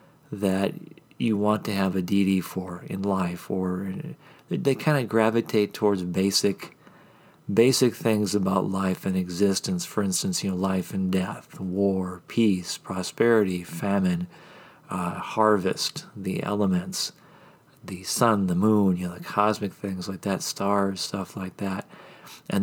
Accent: American